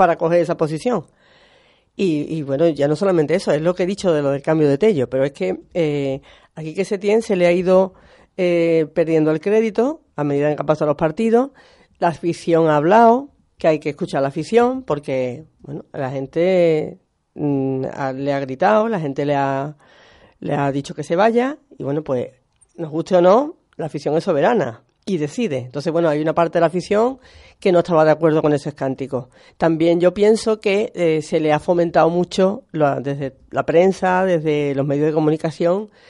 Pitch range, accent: 145-185 Hz, Spanish